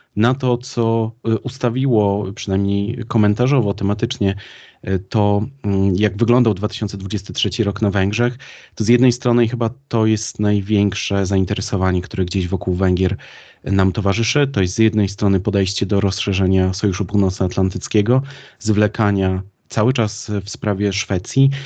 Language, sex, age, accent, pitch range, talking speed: Polish, male, 30-49, native, 95-115 Hz, 125 wpm